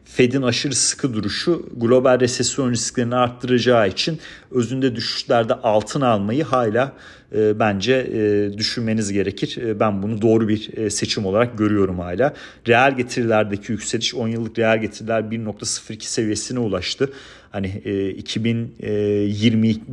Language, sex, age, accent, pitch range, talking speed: Turkish, male, 40-59, native, 105-125 Hz, 115 wpm